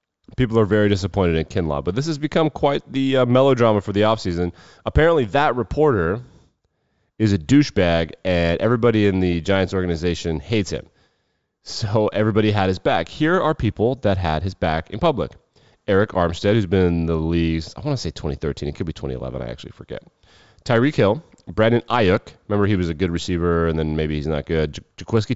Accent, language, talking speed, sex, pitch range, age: American, English, 190 wpm, male, 85-115 Hz, 30-49